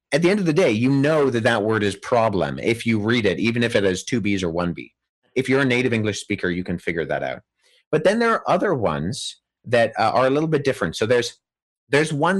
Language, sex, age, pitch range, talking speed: English, male, 30-49, 105-140 Hz, 255 wpm